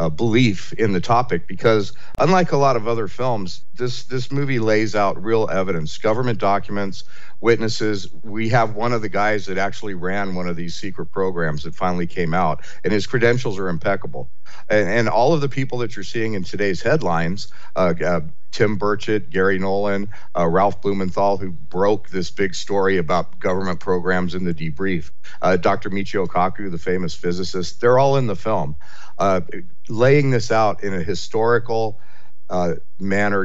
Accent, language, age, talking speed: American, English, 50-69, 175 wpm